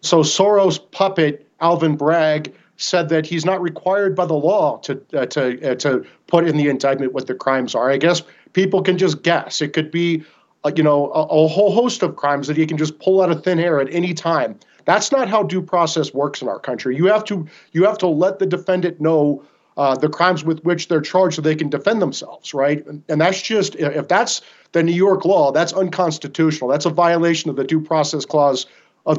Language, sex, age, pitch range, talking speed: English, male, 40-59, 150-185 Hz, 220 wpm